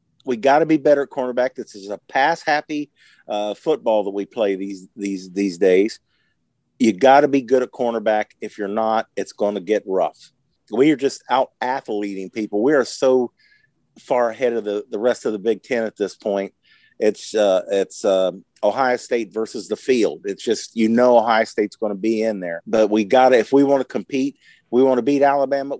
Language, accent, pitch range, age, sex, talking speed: English, American, 110-140 Hz, 40-59, male, 215 wpm